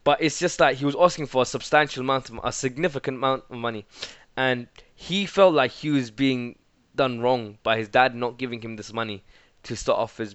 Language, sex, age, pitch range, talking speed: English, male, 20-39, 115-140 Hz, 215 wpm